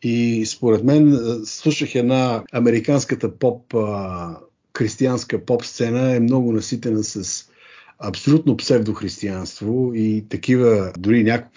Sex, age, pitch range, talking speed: male, 50-69, 110-150 Hz, 100 wpm